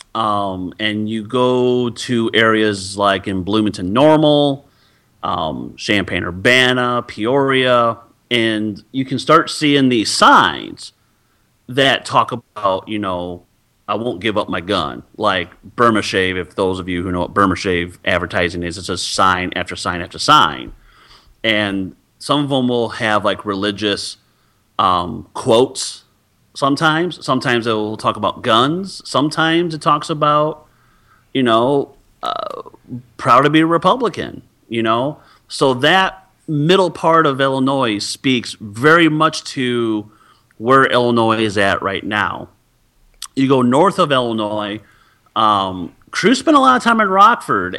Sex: male